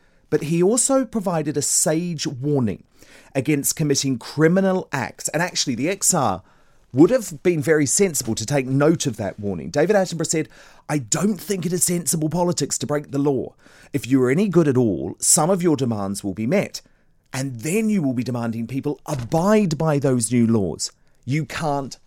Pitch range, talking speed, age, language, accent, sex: 110-160 Hz, 185 wpm, 40-59, English, British, male